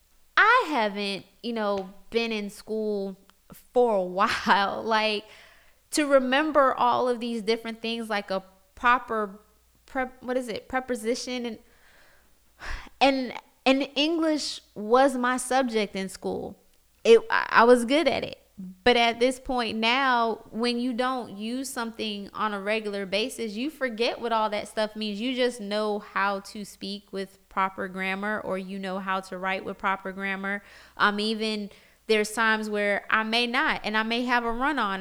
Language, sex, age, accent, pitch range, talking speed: English, female, 20-39, American, 195-245 Hz, 165 wpm